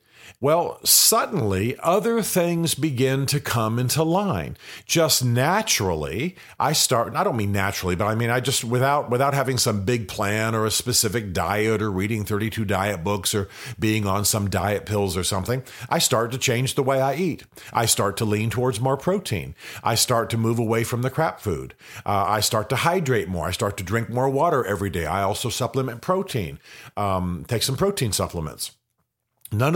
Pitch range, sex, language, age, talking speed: 105-140 Hz, male, English, 50-69, 190 wpm